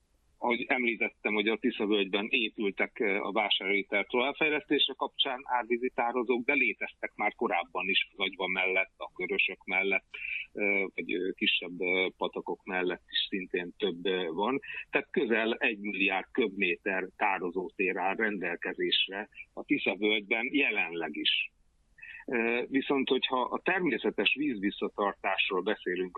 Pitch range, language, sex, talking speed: 105-135 Hz, Hungarian, male, 110 wpm